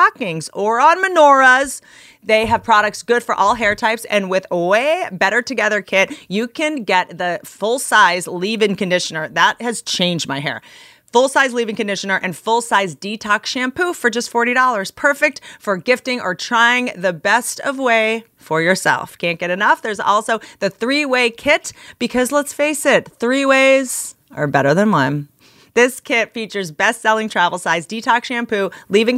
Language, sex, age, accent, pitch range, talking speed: English, female, 30-49, American, 180-245 Hz, 165 wpm